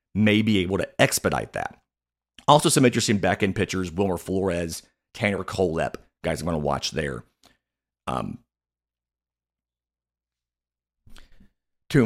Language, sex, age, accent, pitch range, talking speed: English, male, 40-59, American, 85-120 Hz, 115 wpm